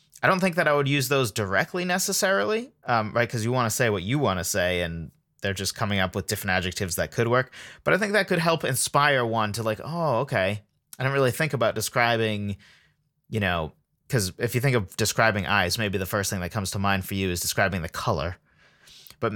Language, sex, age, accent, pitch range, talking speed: English, male, 30-49, American, 95-135 Hz, 235 wpm